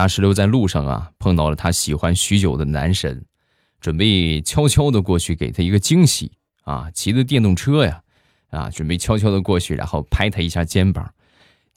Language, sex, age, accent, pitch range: Chinese, male, 20-39, native, 80-105 Hz